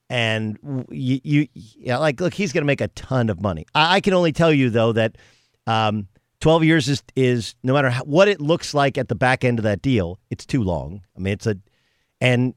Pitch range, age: 115-150 Hz, 50-69